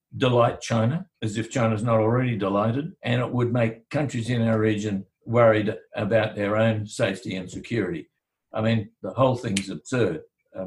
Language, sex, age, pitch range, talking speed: English, male, 60-79, 105-130 Hz, 170 wpm